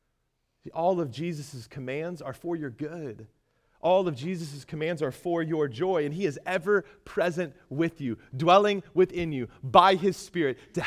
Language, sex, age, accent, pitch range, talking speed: English, male, 30-49, American, 140-220 Hz, 165 wpm